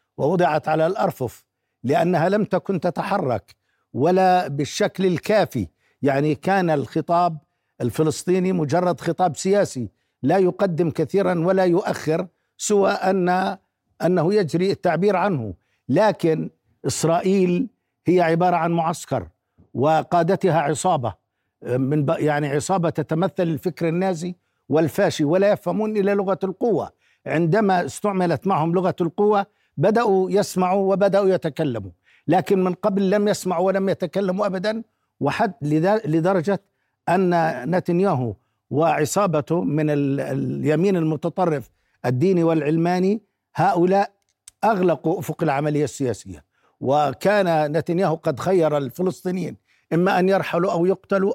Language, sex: Arabic, male